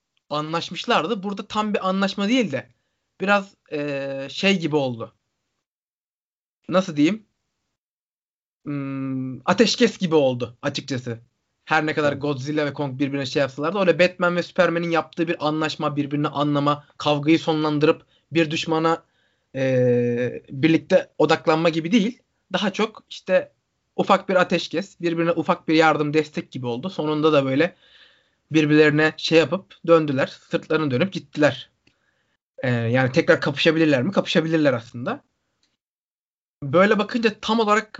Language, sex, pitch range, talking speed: Turkish, male, 145-180 Hz, 125 wpm